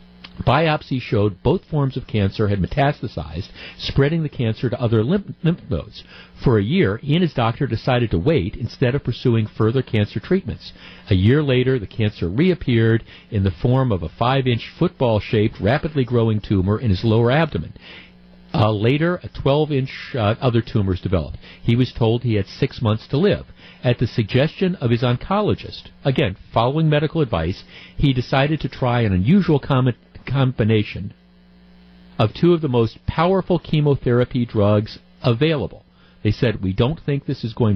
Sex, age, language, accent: male, 50-69, English, American